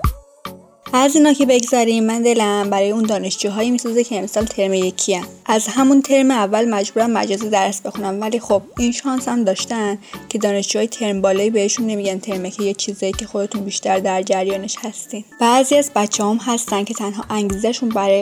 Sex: female